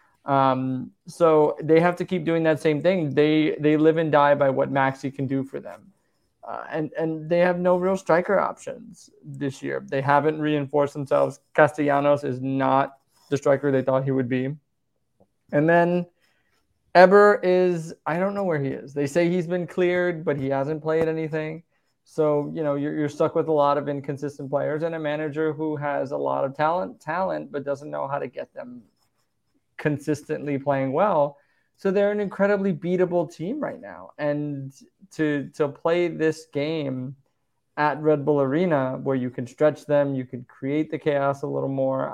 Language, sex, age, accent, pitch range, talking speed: English, male, 20-39, American, 135-160 Hz, 185 wpm